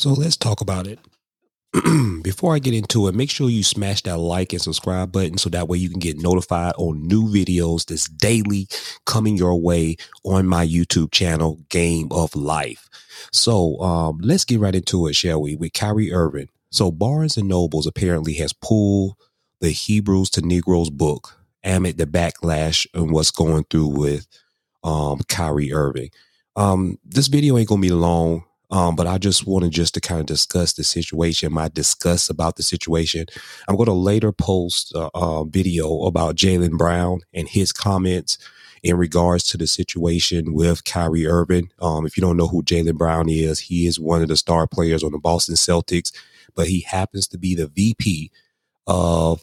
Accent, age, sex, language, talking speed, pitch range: American, 30-49, male, English, 180 wpm, 80-95 Hz